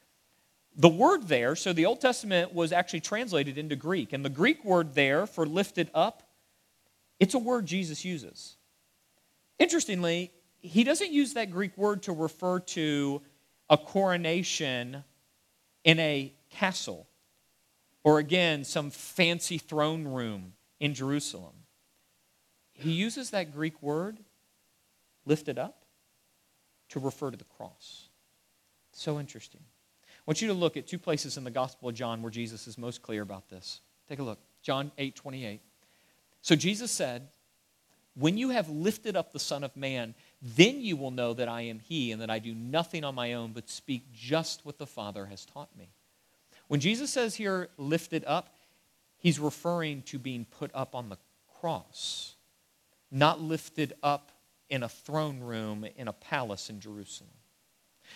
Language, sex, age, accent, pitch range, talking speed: English, male, 40-59, American, 130-175 Hz, 155 wpm